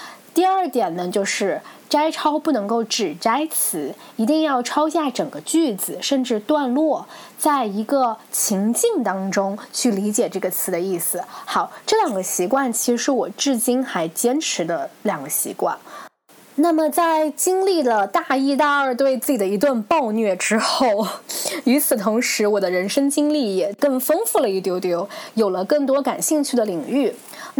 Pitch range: 205-290 Hz